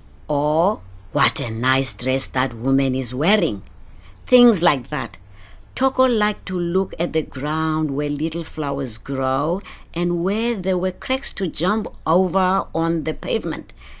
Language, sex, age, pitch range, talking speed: English, female, 60-79, 135-195 Hz, 145 wpm